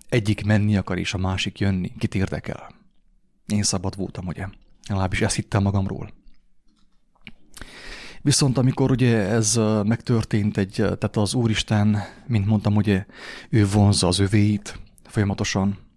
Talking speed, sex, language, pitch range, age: 130 wpm, male, English, 95-115 Hz, 30-49